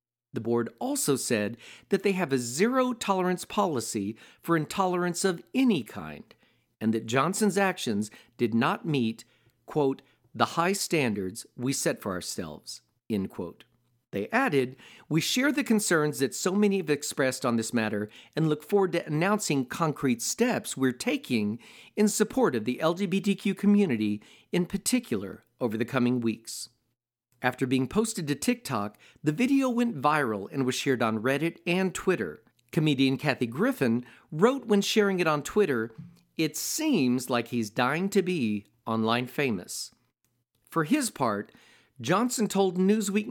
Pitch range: 120-195 Hz